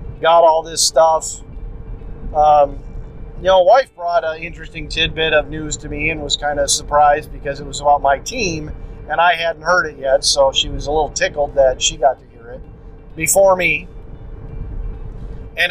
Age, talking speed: 40-59, 185 wpm